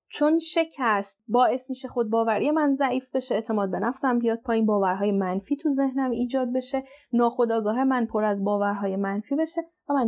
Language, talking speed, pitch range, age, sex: Persian, 165 wpm, 205-260 Hz, 30-49, female